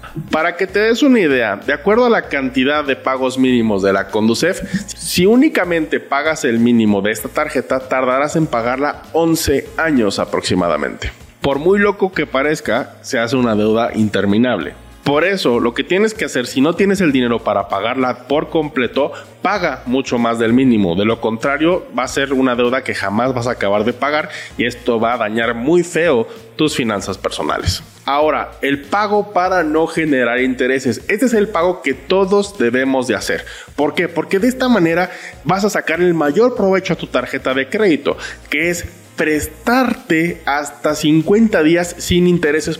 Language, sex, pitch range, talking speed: Spanish, male, 125-175 Hz, 180 wpm